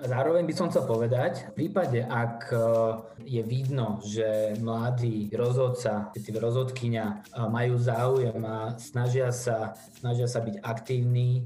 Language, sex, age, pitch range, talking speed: Slovak, male, 20-39, 115-125 Hz, 125 wpm